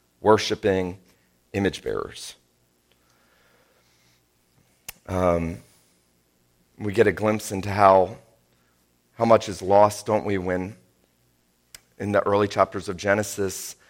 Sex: male